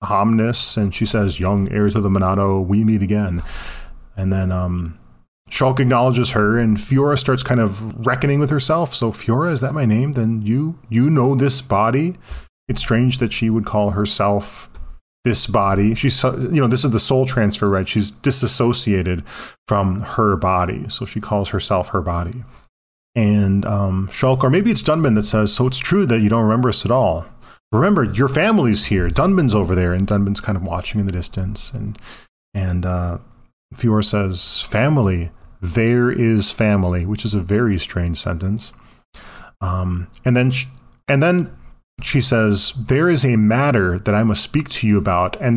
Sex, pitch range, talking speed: male, 95-125 Hz, 180 wpm